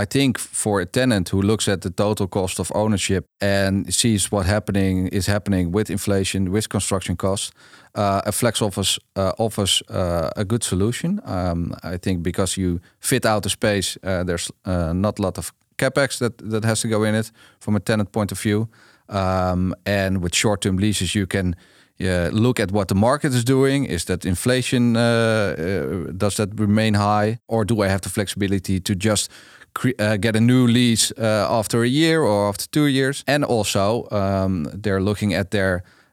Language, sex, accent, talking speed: English, male, Dutch, 195 wpm